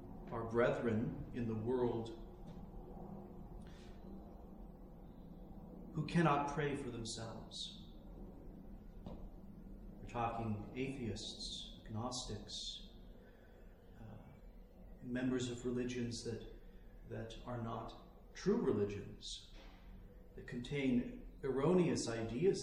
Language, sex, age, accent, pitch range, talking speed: English, male, 50-69, American, 110-135 Hz, 75 wpm